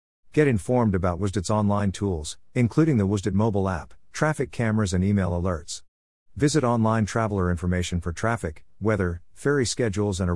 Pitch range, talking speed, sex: 90-115 Hz, 155 wpm, male